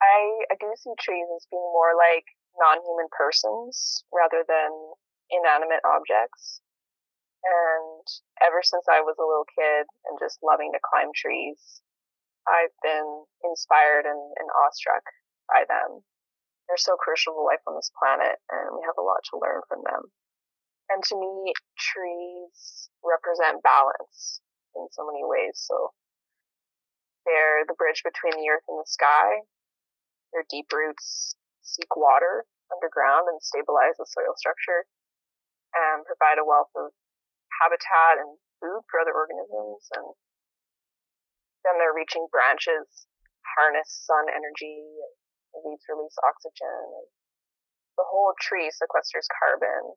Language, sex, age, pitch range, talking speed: English, female, 20-39, 155-210 Hz, 135 wpm